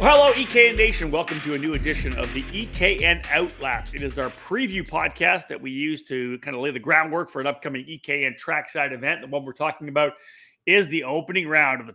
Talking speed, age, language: 215 wpm, 40-59, English